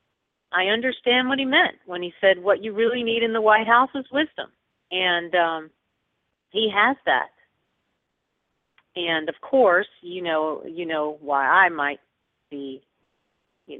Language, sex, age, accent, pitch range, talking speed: English, female, 50-69, American, 150-195 Hz, 150 wpm